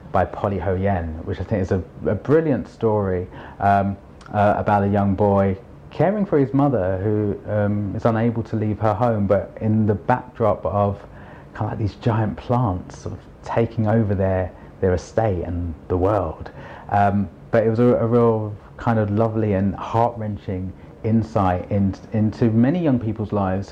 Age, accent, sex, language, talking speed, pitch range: 30-49, British, male, English, 180 wpm, 100-125 Hz